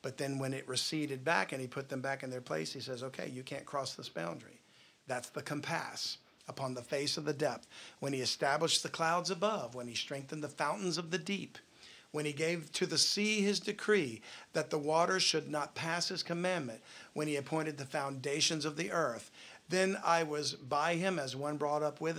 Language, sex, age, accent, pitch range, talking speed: English, male, 50-69, American, 135-165 Hz, 215 wpm